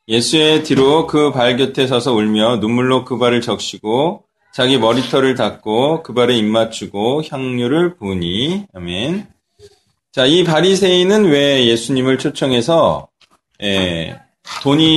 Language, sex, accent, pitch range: Korean, male, native, 125-185 Hz